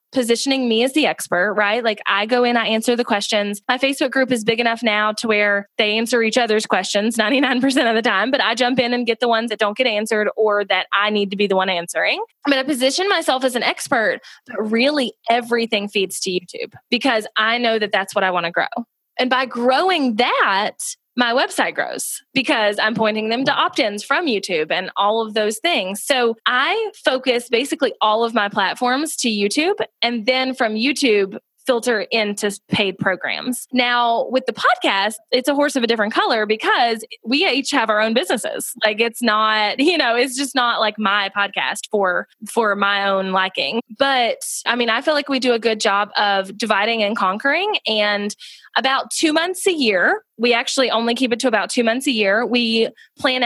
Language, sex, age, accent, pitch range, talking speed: English, female, 20-39, American, 210-260 Hz, 205 wpm